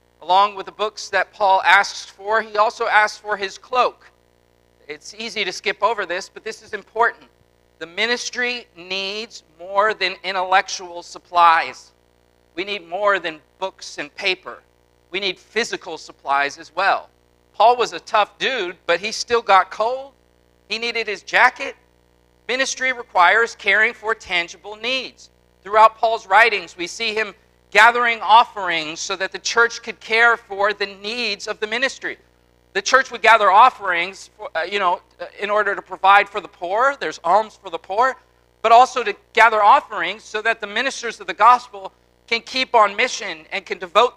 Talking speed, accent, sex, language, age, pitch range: 170 wpm, American, male, English, 50-69, 165-225 Hz